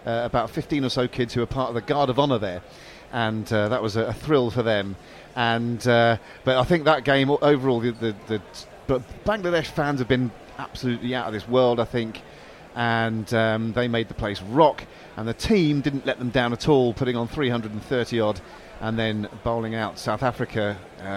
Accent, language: British, English